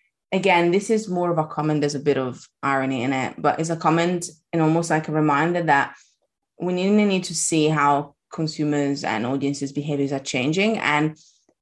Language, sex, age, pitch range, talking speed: English, female, 20-39, 145-185 Hz, 185 wpm